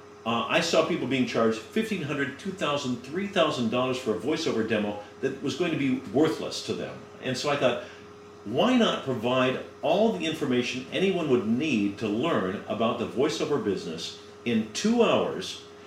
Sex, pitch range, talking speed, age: male, 105-140 Hz, 180 wpm, 50-69